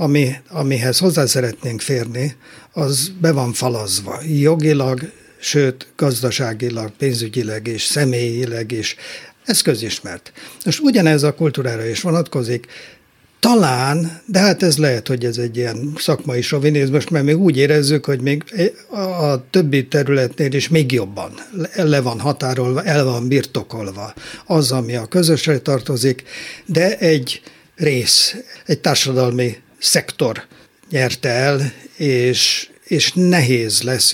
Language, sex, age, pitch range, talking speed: Hungarian, male, 60-79, 125-160 Hz, 125 wpm